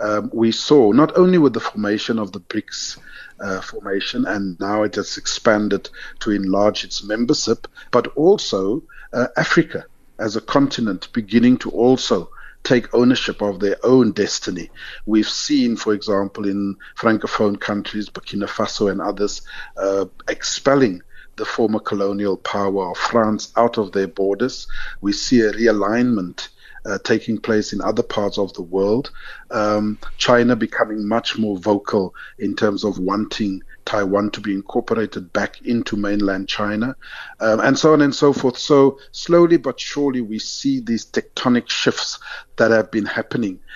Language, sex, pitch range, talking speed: English, male, 100-120 Hz, 155 wpm